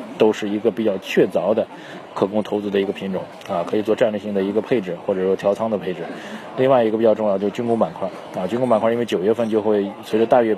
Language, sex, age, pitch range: Chinese, male, 20-39, 100-115 Hz